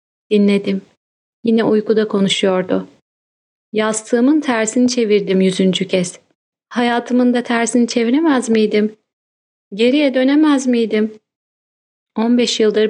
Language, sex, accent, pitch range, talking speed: Turkish, female, native, 200-245 Hz, 90 wpm